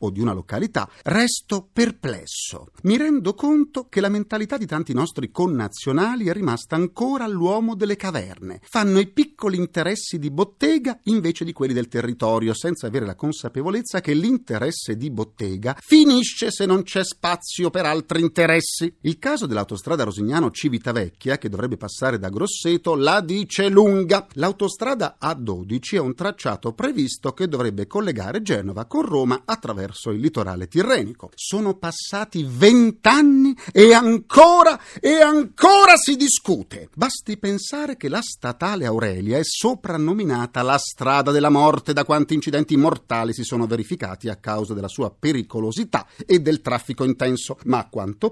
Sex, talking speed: male, 145 wpm